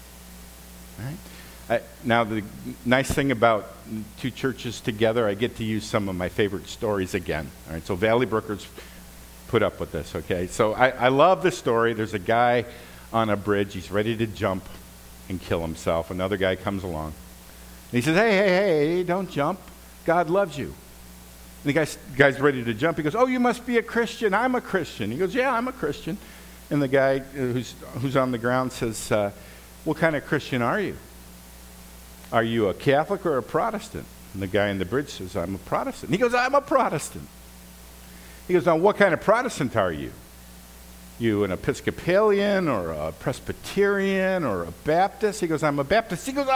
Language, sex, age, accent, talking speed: English, male, 50-69, American, 195 wpm